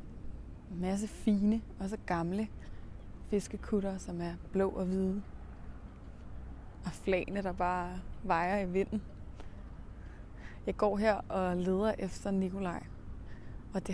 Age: 20-39